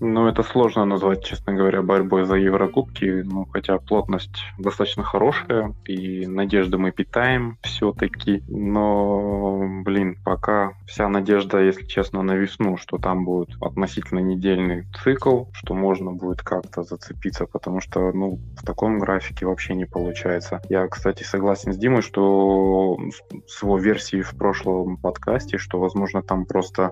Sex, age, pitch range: male, 20-39, 95-100 Hz